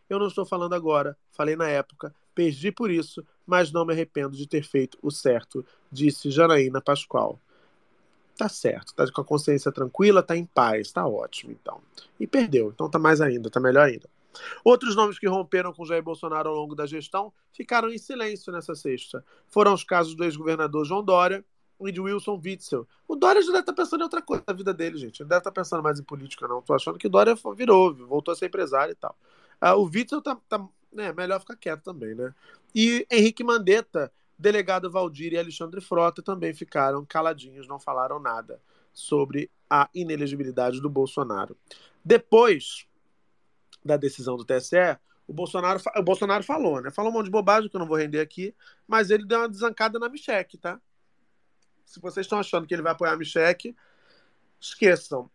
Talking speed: 190 wpm